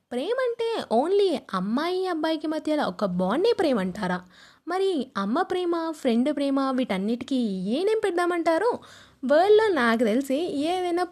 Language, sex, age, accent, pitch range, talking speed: Telugu, female, 20-39, native, 210-345 Hz, 115 wpm